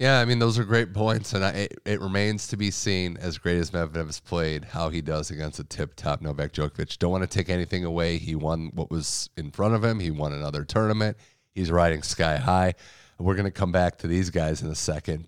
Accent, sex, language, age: American, male, English, 30-49